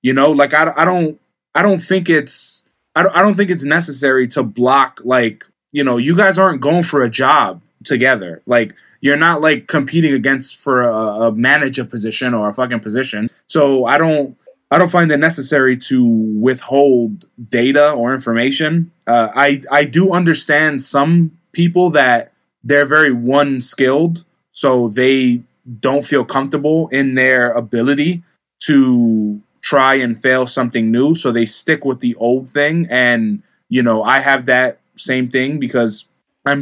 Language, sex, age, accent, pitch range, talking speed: English, male, 20-39, American, 120-150 Hz, 165 wpm